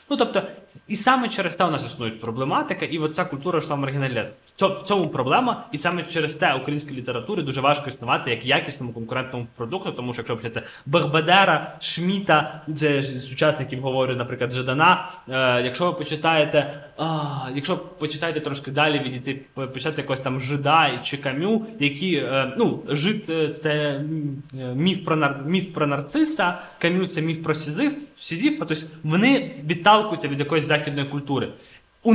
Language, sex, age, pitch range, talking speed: Ukrainian, male, 20-39, 140-180 Hz, 165 wpm